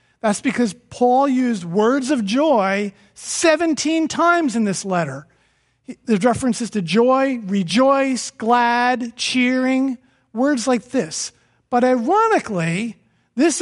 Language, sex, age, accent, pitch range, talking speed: English, male, 50-69, American, 200-280 Hz, 110 wpm